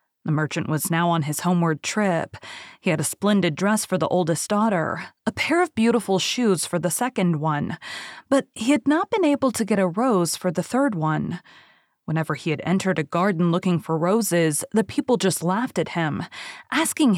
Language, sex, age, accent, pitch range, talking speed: English, female, 20-39, American, 170-220 Hz, 195 wpm